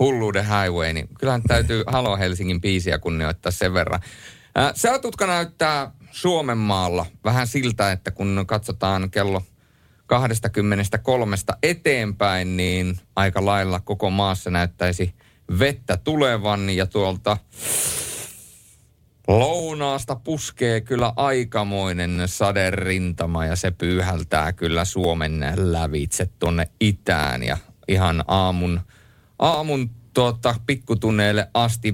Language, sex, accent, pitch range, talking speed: Finnish, male, native, 95-120 Hz, 100 wpm